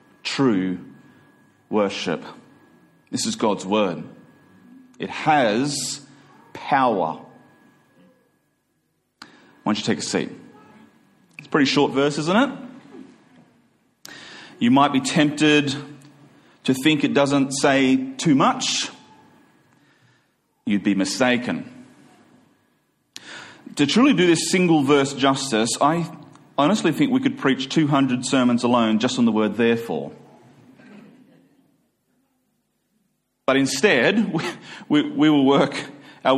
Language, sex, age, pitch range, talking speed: English, male, 40-59, 130-155 Hz, 105 wpm